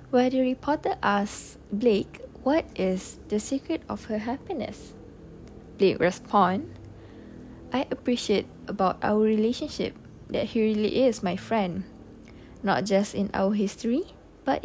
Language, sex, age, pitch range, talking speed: Malay, female, 20-39, 205-270 Hz, 125 wpm